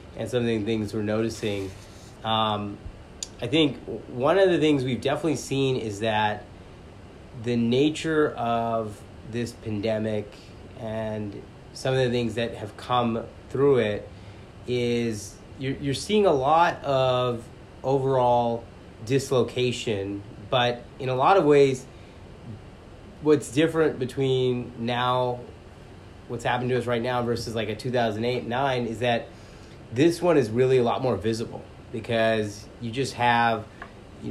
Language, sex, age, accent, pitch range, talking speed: English, male, 30-49, American, 105-130 Hz, 140 wpm